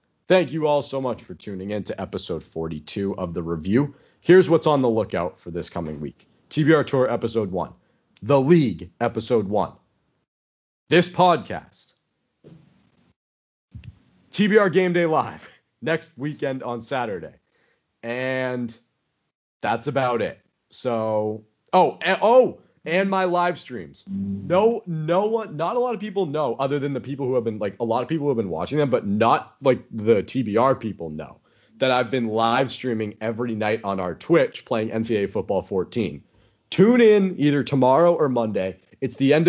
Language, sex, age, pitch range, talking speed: English, male, 30-49, 105-155 Hz, 165 wpm